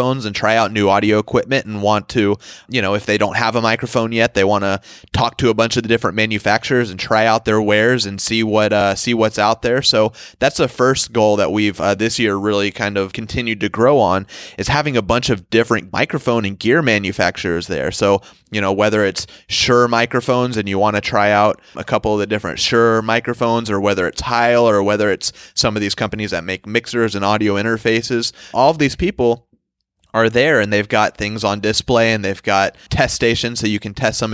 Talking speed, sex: 225 wpm, male